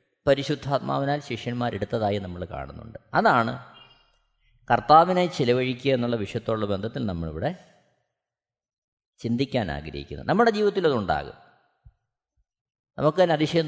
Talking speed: 70 wpm